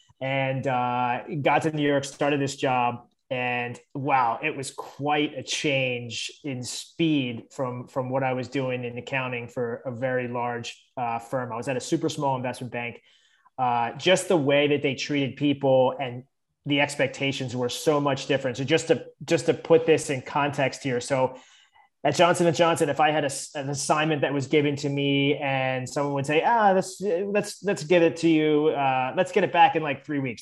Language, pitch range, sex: English, 130-155 Hz, male